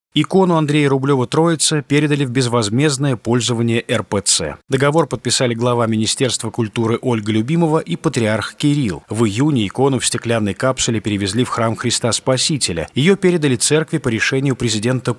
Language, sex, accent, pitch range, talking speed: Russian, male, native, 110-145 Hz, 140 wpm